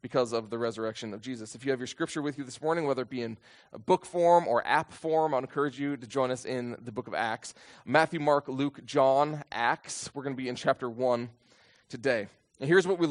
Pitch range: 125-165 Hz